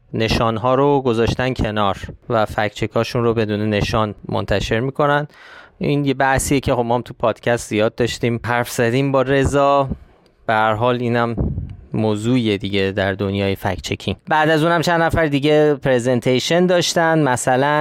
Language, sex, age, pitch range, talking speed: Persian, male, 20-39, 115-145 Hz, 140 wpm